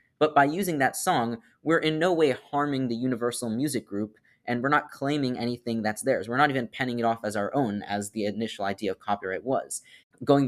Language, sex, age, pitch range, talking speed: English, male, 20-39, 110-130 Hz, 220 wpm